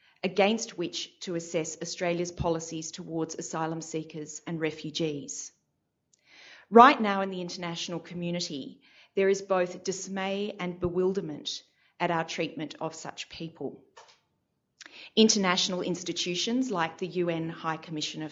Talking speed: 120 wpm